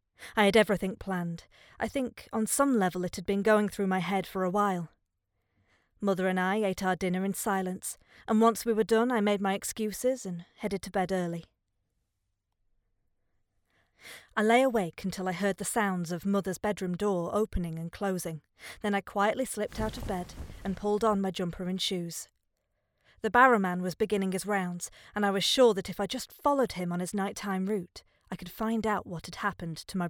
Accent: British